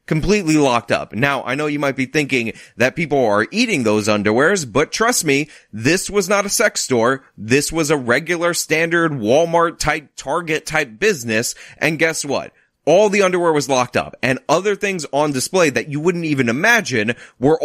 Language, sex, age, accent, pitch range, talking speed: English, male, 30-49, American, 115-165 Hz, 185 wpm